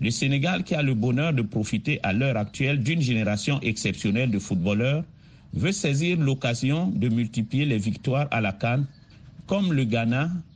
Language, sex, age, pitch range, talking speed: French, male, 50-69, 115-150 Hz, 165 wpm